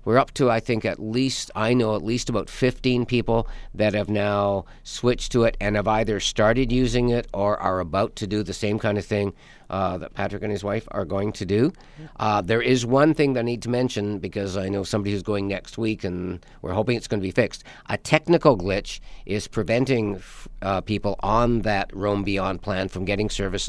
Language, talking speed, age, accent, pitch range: English, 220 wpm, 50-69, American, 95-115 Hz